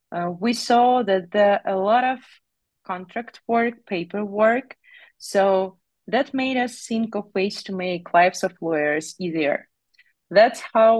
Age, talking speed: 30-49, 145 wpm